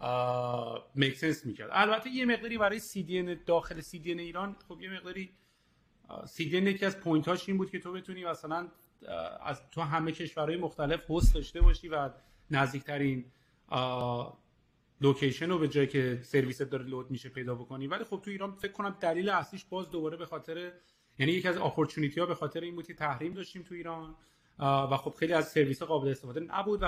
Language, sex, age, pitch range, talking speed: English, male, 30-49, 135-175 Hz, 180 wpm